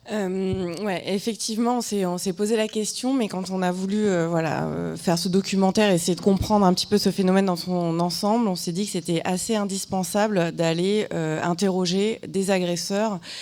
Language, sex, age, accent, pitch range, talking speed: French, female, 20-39, French, 165-200 Hz, 190 wpm